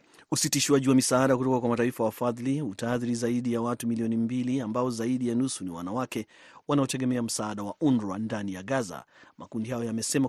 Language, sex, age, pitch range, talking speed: Swahili, male, 30-49, 115-140 Hz, 170 wpm